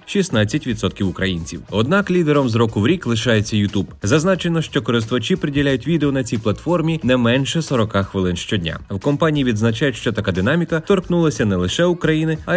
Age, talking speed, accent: 30-49, 160 wpm, native